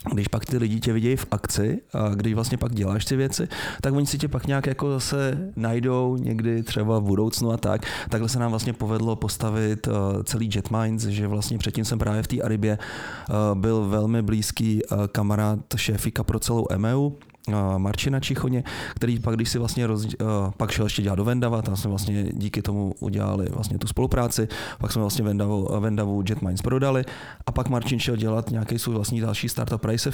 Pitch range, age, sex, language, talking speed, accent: 105-120 Hz, 30-49, male, Czech, 190 wpm, native